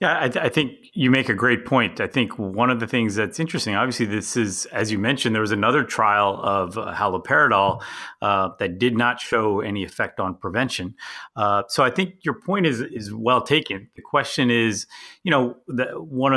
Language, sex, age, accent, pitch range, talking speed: English, male, 30-49, American, 100-120 Hz, 210 wpm